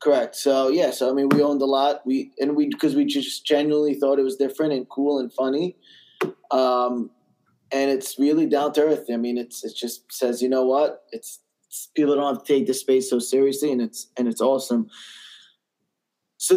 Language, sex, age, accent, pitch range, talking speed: English, male, 20-39, American, 125-145 Hz, 210 wpm